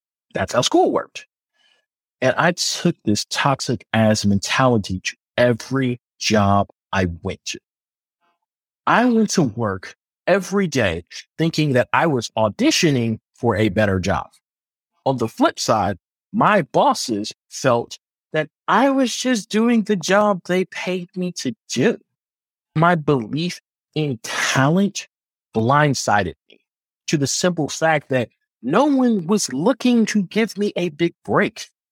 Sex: male